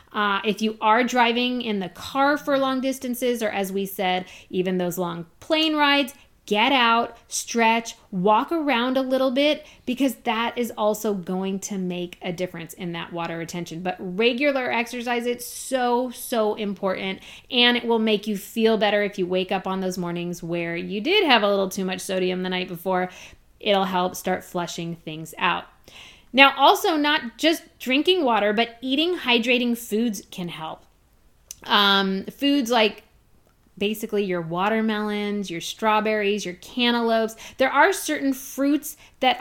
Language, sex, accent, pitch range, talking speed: English, female, American, 190-250 Hz, 165 wpm